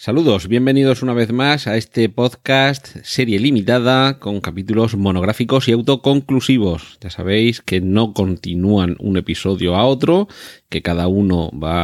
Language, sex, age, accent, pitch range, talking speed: Spanish, male, 30-49, Spanish, 90-120 Hz, 140 wpm